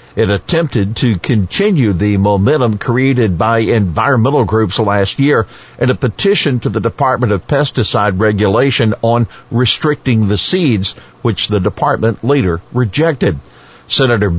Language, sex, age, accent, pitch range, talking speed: English, male, 50-69, American, 105-135 Hz, 130 wpm